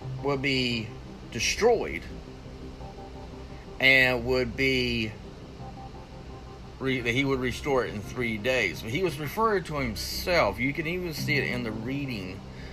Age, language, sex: 30-49, English, male